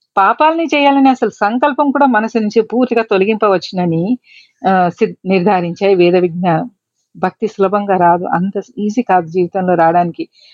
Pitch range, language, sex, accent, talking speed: 190-245 Hz, Telugu, female, native, 125 wpm